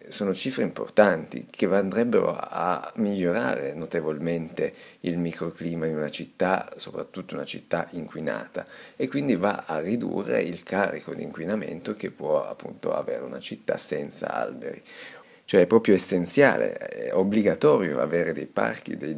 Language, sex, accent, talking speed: Italian, male, native, 130 wpm